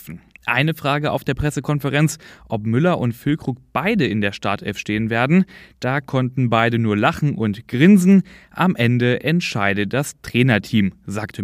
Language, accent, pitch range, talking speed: German, German, 115-155 Hz, 145 wpm